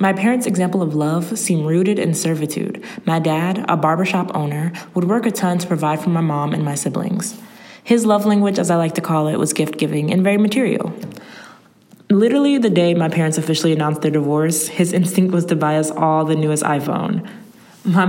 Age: 20-39